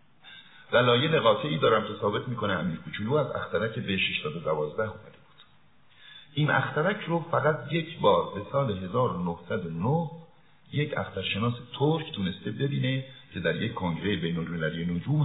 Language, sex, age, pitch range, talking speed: Persian, male, 50-69, 95-150 Hz, 140 wpm